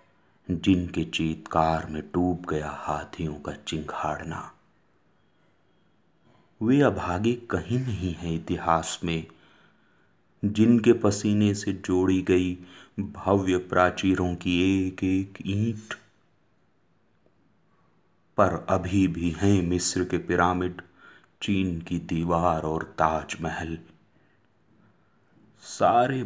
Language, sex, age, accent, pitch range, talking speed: Hindi, male, 30-49, native, 90-105 Hz, 90 wpm